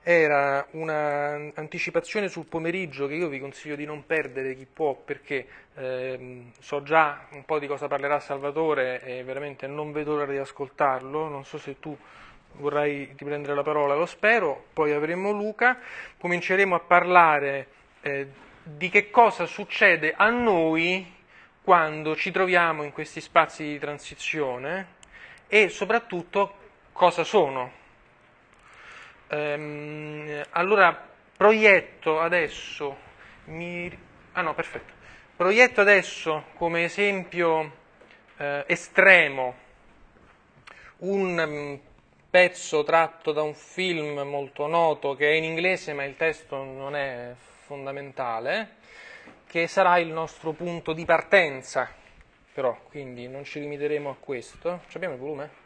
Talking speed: 125 wpm